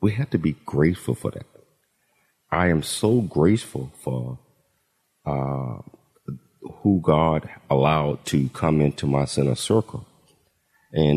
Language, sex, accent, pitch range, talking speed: English, male, American, 70-85 Hz, 125 wpm